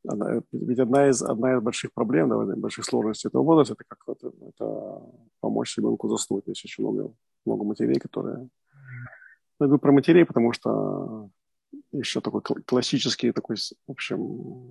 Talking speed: 155 wpm